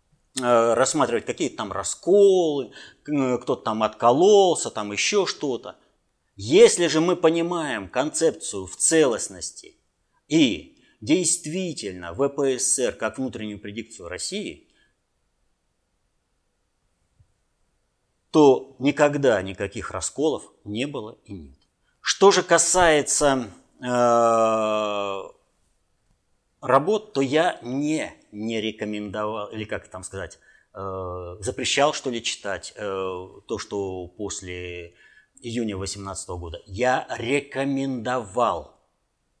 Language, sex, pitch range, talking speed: Russian, male, 105-145 Hz, 90 wpm